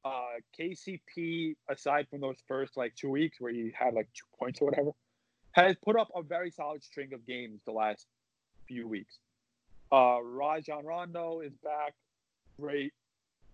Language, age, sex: English, 30-49, male